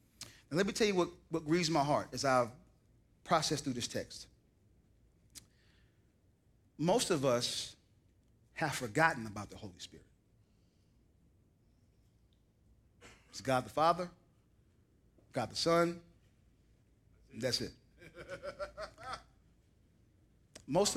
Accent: American